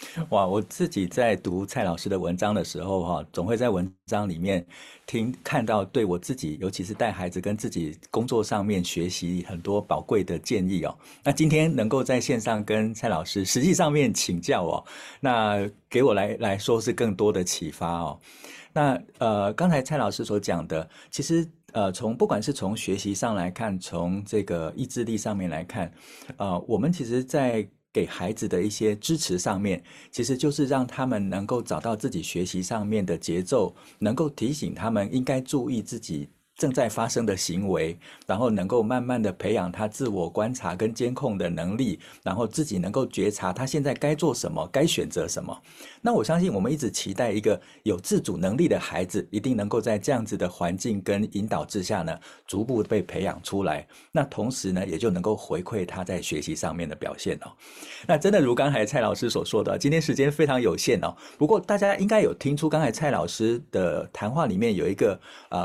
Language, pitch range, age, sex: Chinese, 95-135 Hz, 50-69, male